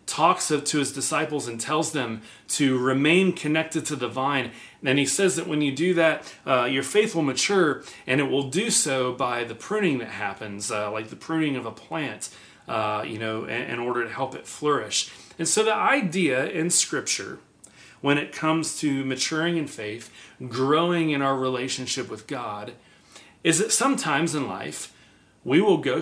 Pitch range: 120-155 Hz